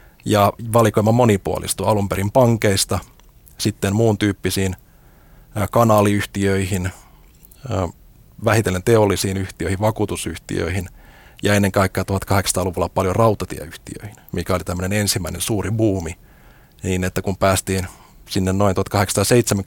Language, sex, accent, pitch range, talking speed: Finnish, male, native, 95-110 Hz, 100 wpm